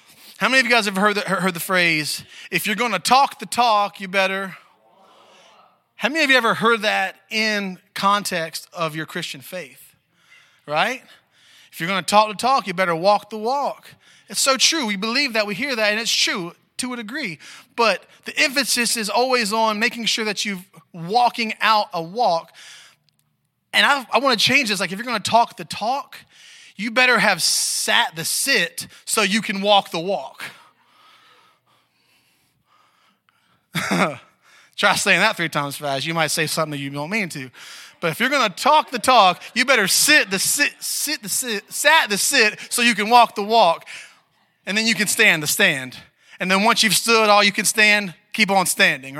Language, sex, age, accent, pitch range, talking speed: English, male, 30-49, American, 185-240 Hz, 195 wpm